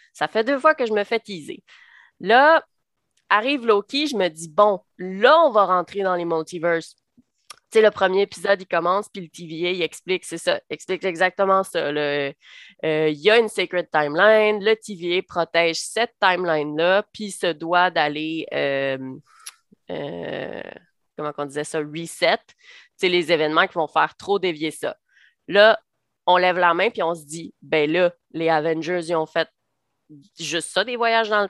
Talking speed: 180 wpm